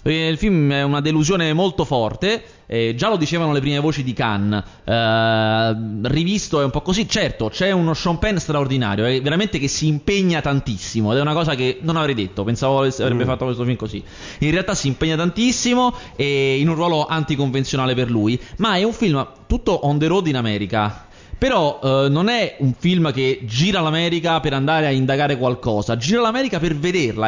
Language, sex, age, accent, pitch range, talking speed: Italian, male, 20-39, native, 130-185 Hz, 195 wpm